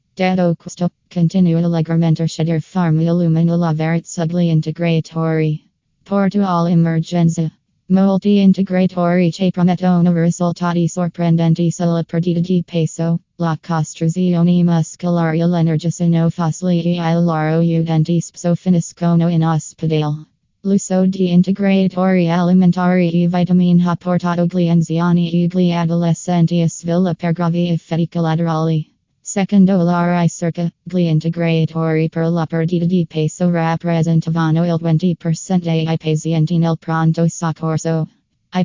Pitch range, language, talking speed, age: 165-180 Hz, English, 110 wpm, 20-39